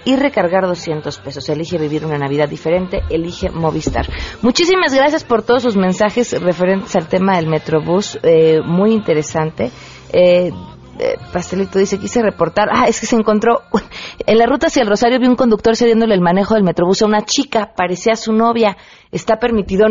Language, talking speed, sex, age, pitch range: Spanish, 175 wpm, female, 30-49, 165-210 Hz